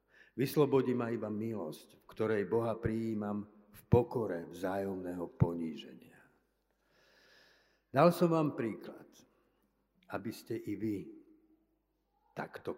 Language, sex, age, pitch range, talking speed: Slovak, male, 60-79, 100-135 Hz, 100 wpm